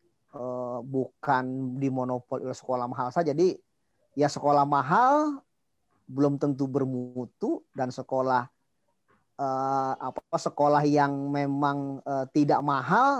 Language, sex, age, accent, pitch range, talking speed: Indonesian, male, 40-59, native, 130-165 Hz, 105 wpm